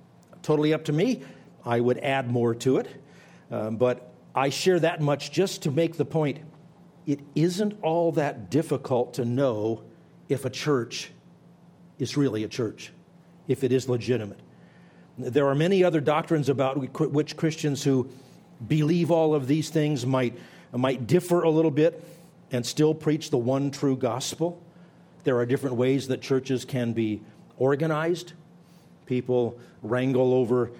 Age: 50-69